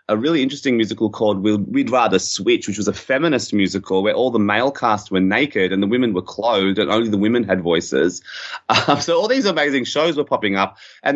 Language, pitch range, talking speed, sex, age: English, 95-115 Hz, 220 wpm, male, 30-49